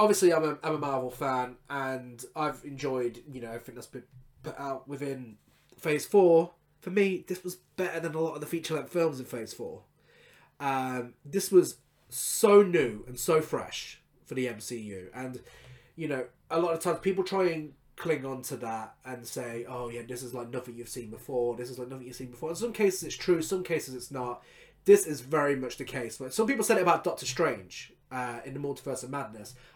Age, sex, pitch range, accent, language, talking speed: 20-39, male, 125-165 Hz, British, English, 210 wpm